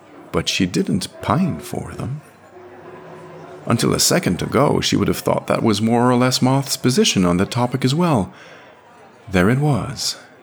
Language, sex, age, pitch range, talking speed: English, male, 50-69, 85-130 Hz, 165 wpm